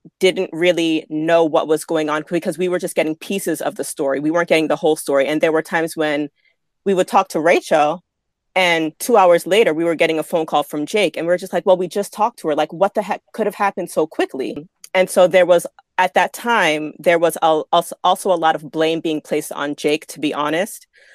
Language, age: English, 30-49